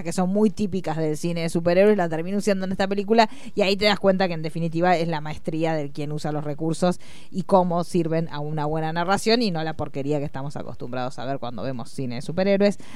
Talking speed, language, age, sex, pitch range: 235 wpm, Spanish, 20-39, female, 160-205 Hz